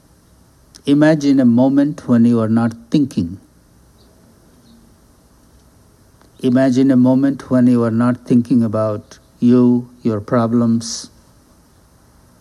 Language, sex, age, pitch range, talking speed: English, male, 60-79, 95-130 Hz, 95 wpm